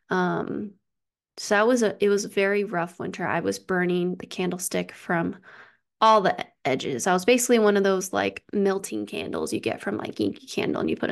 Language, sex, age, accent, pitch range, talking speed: English, female, 20-39, American, 185-220 Hz, 205 wpm